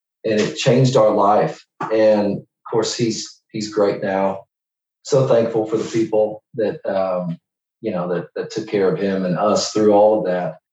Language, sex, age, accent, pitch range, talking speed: English, male, 40-59, American, 95-110 Hz, 185 wpm